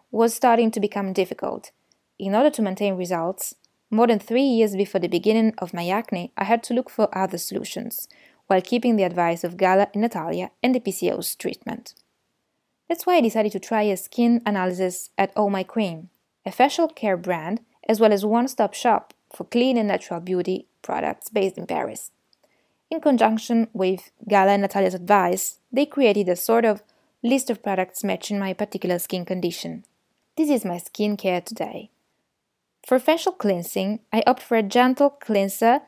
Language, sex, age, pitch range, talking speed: French, female, 20-39, 185-235 Hz, 175 wpm